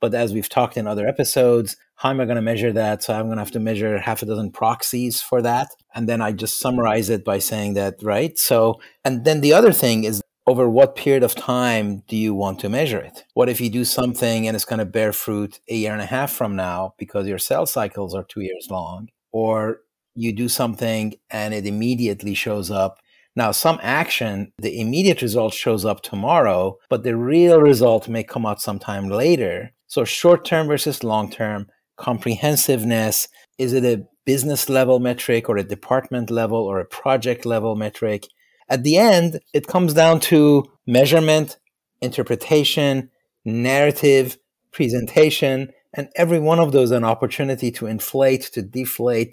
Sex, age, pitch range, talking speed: male, 30-49, 110-130 Hz, 180 wpm